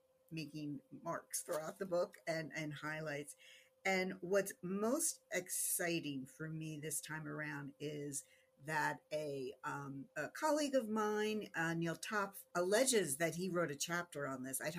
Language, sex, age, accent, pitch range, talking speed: English, female, 50-69, American, 155-225 Hz, 150 wpm